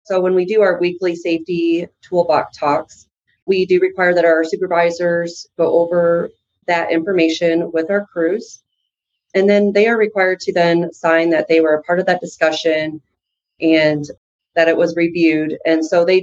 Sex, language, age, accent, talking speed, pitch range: female, English, 30-49, American, 170 wpm, 160-185 Hz